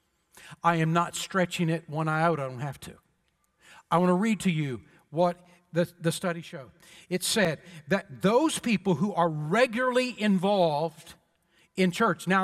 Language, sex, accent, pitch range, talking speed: English, male, American, 170-215 Hz, 170 wpm